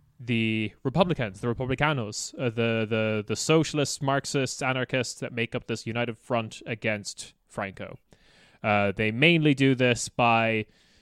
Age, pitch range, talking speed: 20-39, 110-140 Hz, 135 wpm